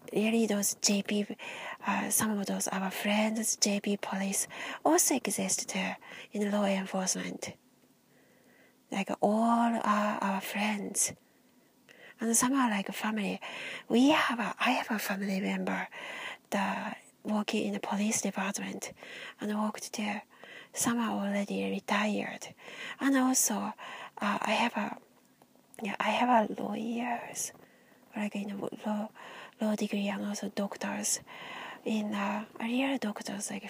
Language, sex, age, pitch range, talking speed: English, female, 30-49, 200-235 Hz, 130 wpm